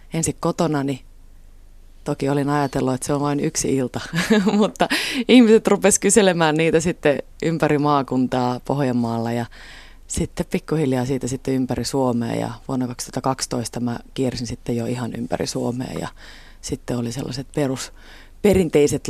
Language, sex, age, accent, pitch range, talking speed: Finnish, female, 30-49, native, 130-160 Hz, 140 wpm